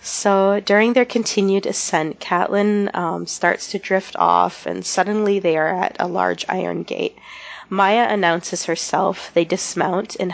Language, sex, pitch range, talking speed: English, female, 170-210 Hz, 150 wpm